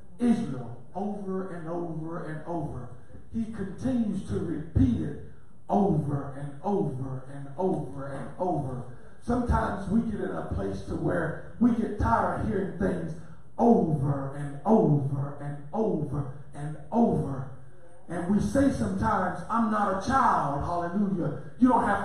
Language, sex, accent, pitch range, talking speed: English, male, American, 160-240 Hz, 140 wpm